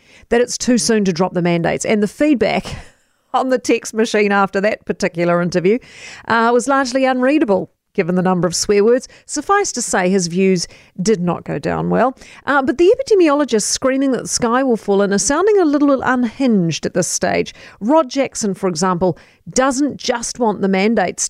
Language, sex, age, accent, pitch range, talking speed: English, female, 40-59, Australian, 205-265 Hz, 190 wpm